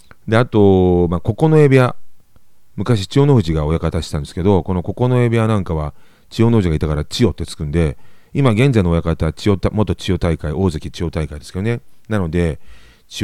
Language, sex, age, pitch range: Japanese, male, 40-59, 80-105 Hz